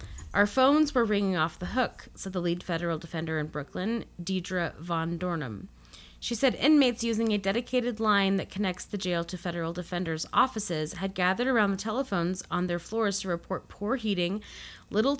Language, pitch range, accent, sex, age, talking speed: English, 165-210 Hz, American, female, 30-49, 180 wpm